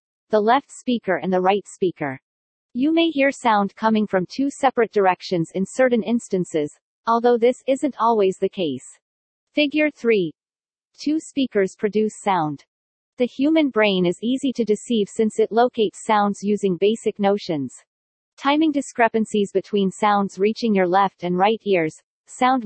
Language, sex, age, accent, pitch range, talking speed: English, female, 40-59, American, 190-240 Hz, 150 wpm